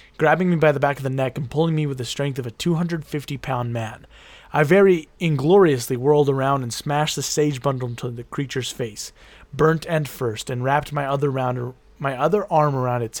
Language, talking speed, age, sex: English, 195 wpm, 30-49, male